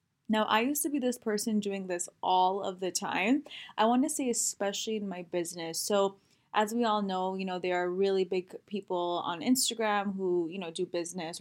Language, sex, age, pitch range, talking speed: English, female, 10-29, 180-225 Hz, 210 wpm